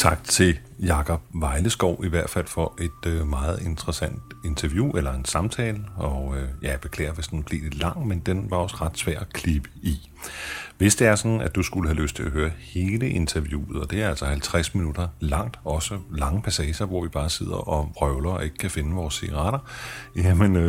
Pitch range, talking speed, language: 75-95 Hz, 200 wpm, Danish